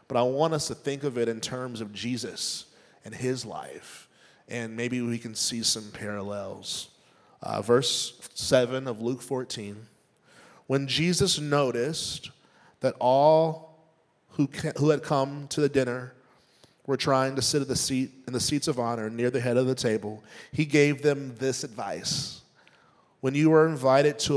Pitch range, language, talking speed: 115-135 Hz, English, 170 wpm